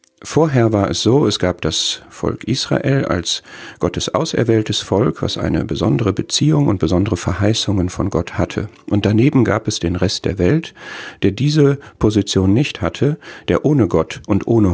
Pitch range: 90-120 Hz